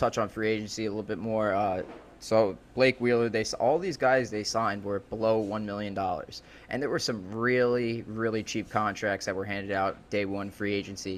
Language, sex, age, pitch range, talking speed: English, male, 20-39, 105-115 Hz, 210 wpm